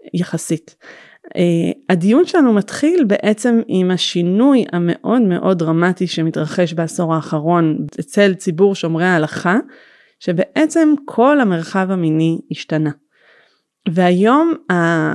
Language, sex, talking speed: Hebrew, female, 95 wpm